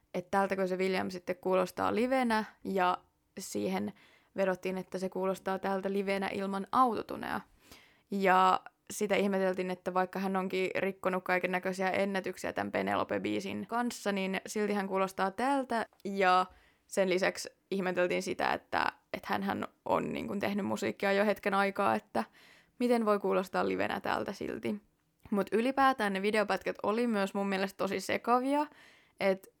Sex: female